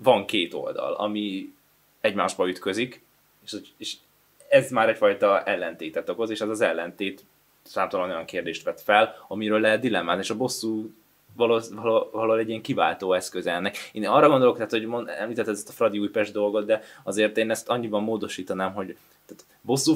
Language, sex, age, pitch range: Hungarian, male, 20-39, 105-135 Hz